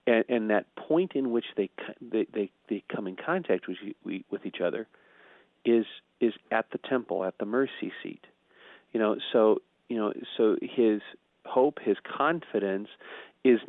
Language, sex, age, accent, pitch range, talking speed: English, male, 40-59, American, 100-115 Hz, 160 wpm